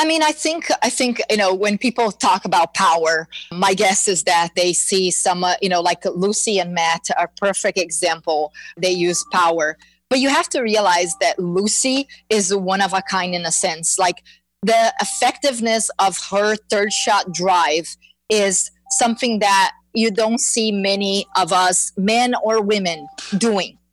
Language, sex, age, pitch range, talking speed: English, female, 30-49, 185-230 Hz, 175 wpm